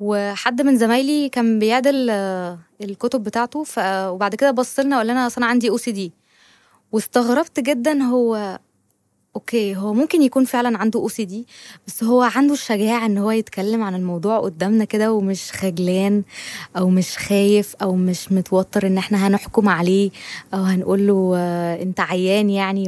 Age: 20-39